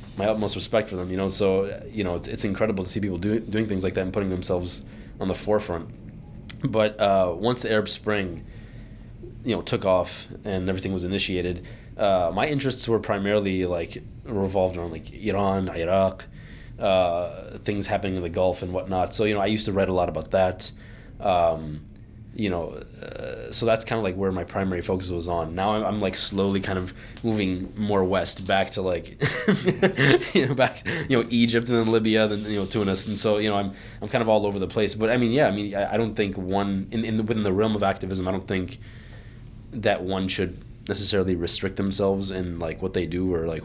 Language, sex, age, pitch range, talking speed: English, male, 20-39, 90-110 Hz, 215 wpm